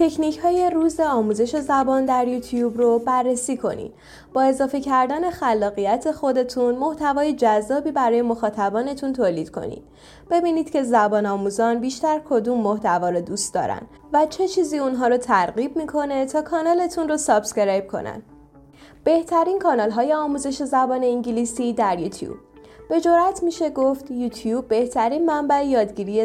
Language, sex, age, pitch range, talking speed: Persian, female, 10-29, 220-295 Hz, 135 wpm